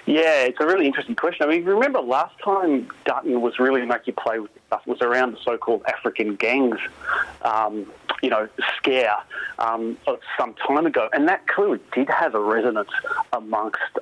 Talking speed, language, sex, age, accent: 170 wpm, English, male, 30-49, Australian